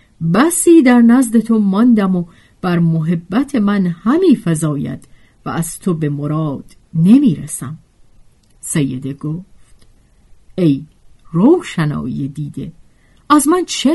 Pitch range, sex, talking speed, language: 150-225 Hz, female, 105 wpm, Persian